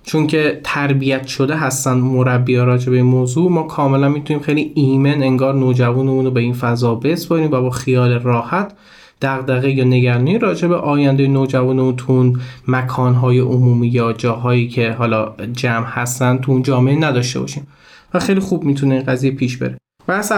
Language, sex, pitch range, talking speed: Persian, male, 130-175 Hz, 155 wpm